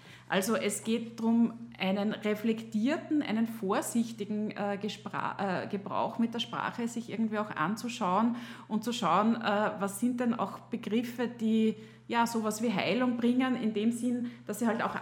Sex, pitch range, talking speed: female, 185-230 Hz, 150 wpm